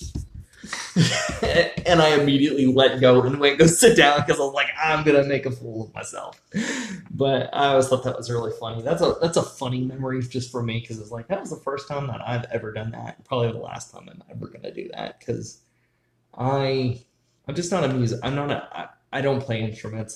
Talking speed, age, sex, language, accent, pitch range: 225 wpm, 20-39, male, English, American, 115-140 Hz